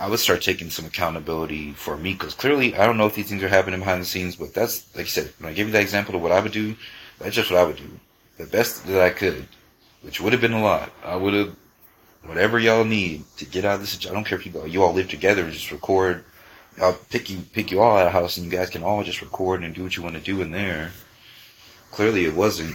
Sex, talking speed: male, 275 wpm